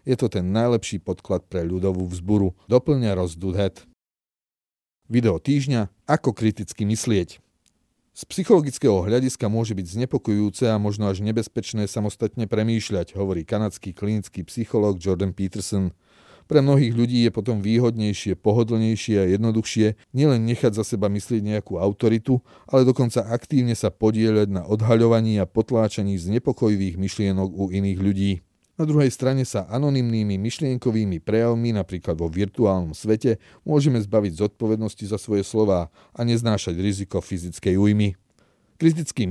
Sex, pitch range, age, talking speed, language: male, 100-120 Hz, 30-49, 135 wpm, Slovak